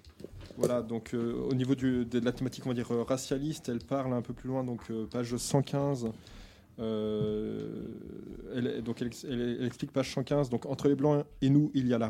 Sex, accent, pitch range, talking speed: male, French, 110-130 Hz, 210 wpm